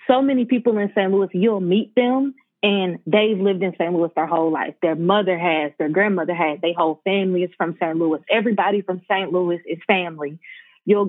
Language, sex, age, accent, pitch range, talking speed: English, female, 20-39, American, 175-205 Hz, 205 wpm